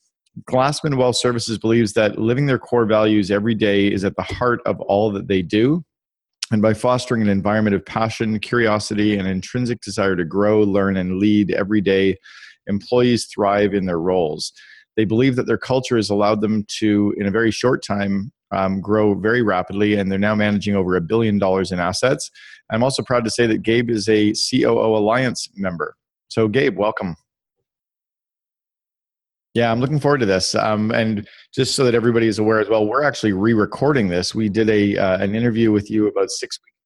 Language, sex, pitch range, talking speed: English, male, 100-115 Hz, 190 wpm